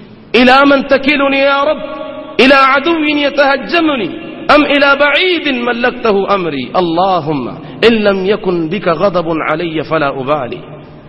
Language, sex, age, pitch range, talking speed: Swahili, male, 40-59, 195-310 Hz, 120 wpm